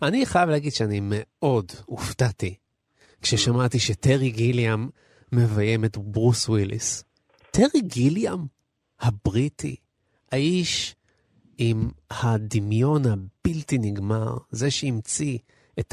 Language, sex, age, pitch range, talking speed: Hebrew, male, 30-49, 110-140 Hz, 90 wpm